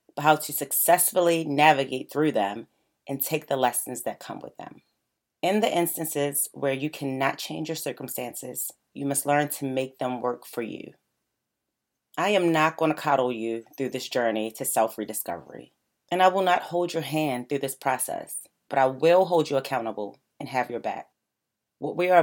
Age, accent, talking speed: 30-49, American, 185 wpm